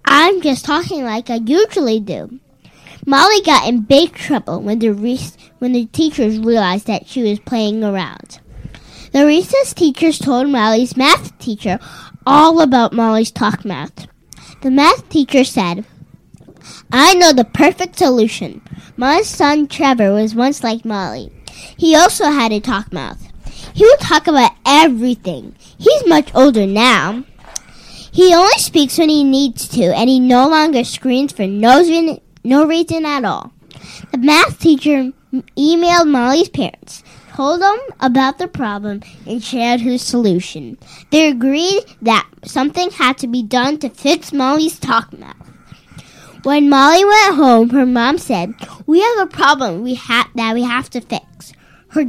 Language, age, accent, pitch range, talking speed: English, 10-29, American, 230-310 Hz, 150 wpm